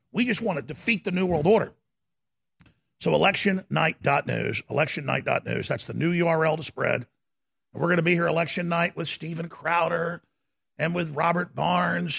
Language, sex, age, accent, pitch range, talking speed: English, male, 50-69, American, 160-190 Hz, 160 wpm